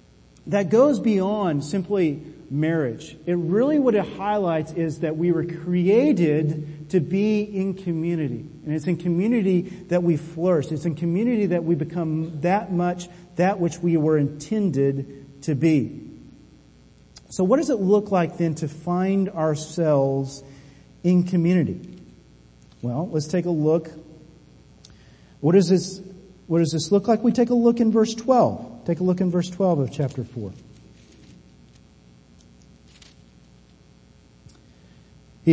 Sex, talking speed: male, 140 wpm